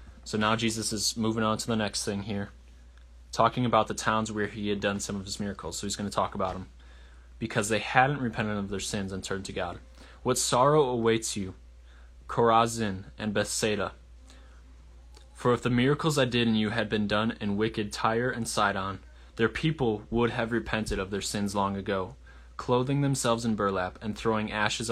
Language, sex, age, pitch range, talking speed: English, male, 20-39, 85-115 Hz, 195 wpm